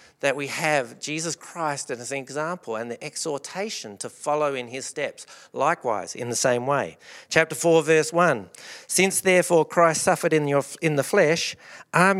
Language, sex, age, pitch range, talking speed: English, male, 50-69, 135-175 Hz, 165 wpm